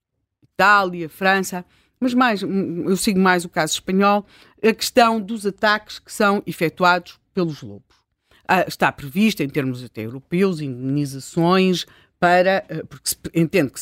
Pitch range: 165-220 Hz